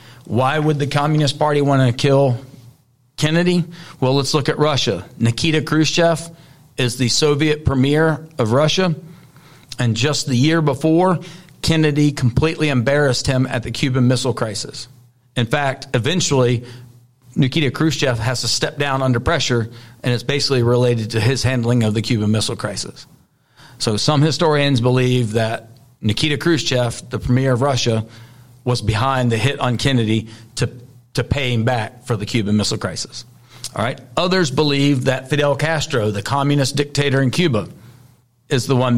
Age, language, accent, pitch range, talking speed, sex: 40-59, English, American, 120-145 Hz, 155 wpm, male